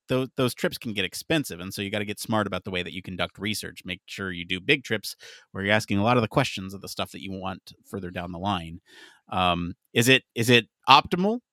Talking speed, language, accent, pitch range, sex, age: 255 wpm, English, American, 105-160 Hz, male, 30-49